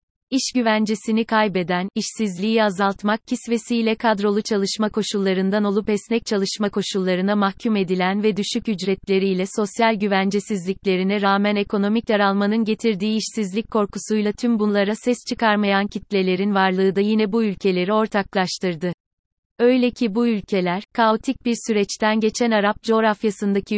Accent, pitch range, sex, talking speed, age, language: native, 195-220 Hz, female, 120 wpm, 30-49, Turkish